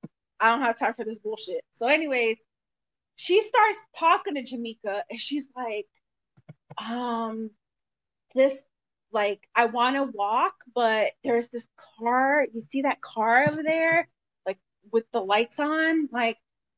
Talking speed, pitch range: 145 wpm, 235-340 Hz